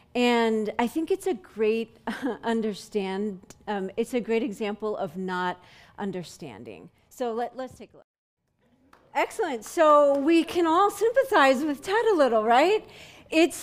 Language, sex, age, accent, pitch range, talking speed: English, female, 40-59, American, 200-300 Hz, 145 wpm